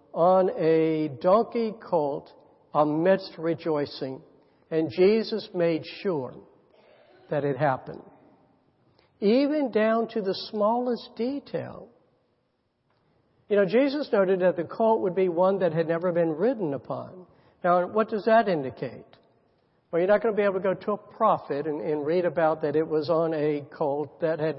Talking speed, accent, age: 155 wpm, American, 60-79